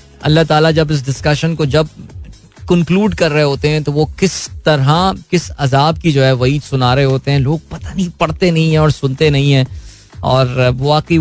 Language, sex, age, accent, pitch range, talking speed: Hindi, male, 20-39, native, 135-155 Hz, 205 wpm